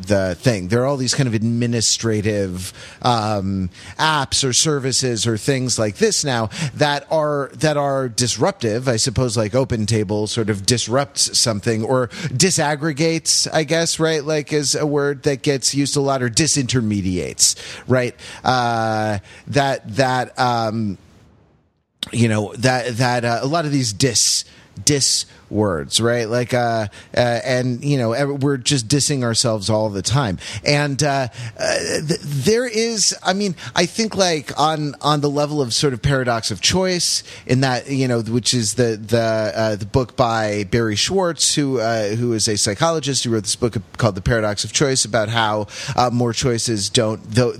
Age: 30-49